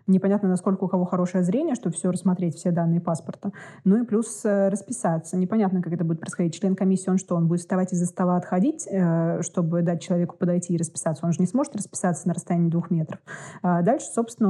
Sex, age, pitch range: female, 20-39, 175-200 Hz